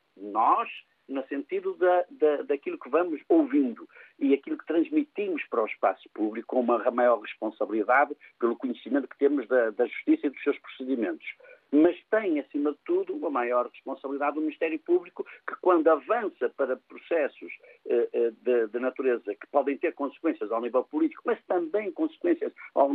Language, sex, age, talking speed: Portuguese, male, 50-69, 165 wpm